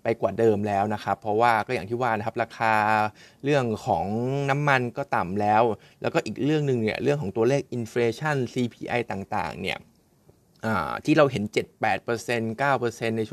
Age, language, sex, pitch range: 20-39, Thai, male, 110-135 Hz